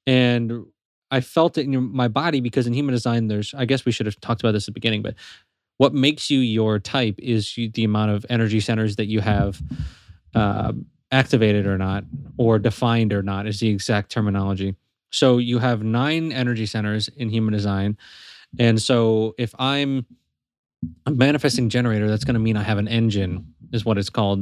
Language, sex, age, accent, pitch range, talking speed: English, male, 20-39, American, 110-135 Hz, 180 wpm